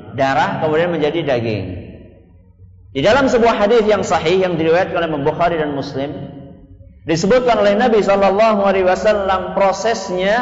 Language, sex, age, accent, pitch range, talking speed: Indonesian, male, 50-69, native, 125-195 Hz, 130 wpm